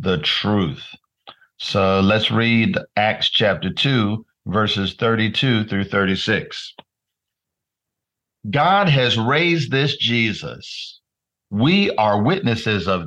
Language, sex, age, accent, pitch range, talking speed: English, male, 50-69, American, 110-140 Hz, 95 wpm